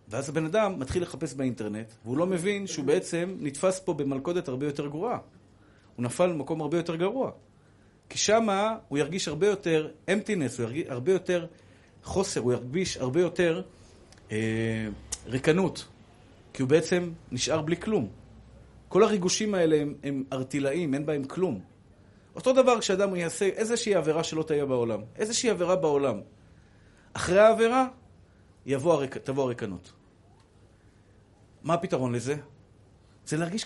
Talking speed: 135 wpm